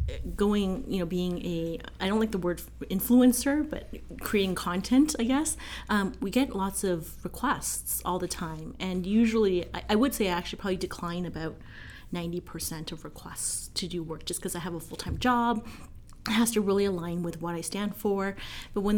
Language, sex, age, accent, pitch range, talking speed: English, female, 30-49, American, 170-215 Hz, 195 wpm